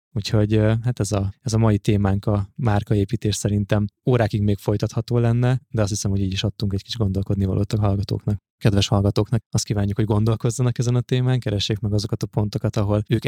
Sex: male